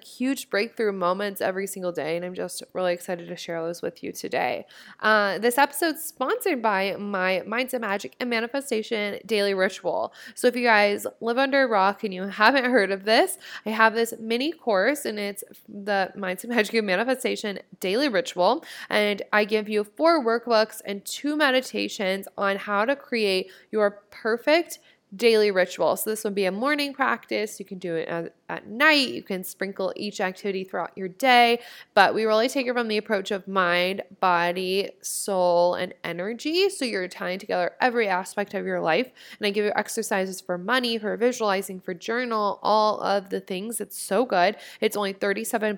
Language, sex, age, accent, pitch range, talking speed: English, female, 20-39, American, 190-235 Hz, 180 wpm